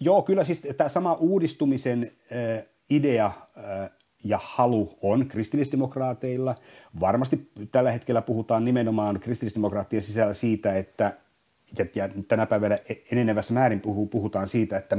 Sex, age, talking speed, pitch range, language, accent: male, 30-49, 115 wpm, 100-120 Hz, Finnish, native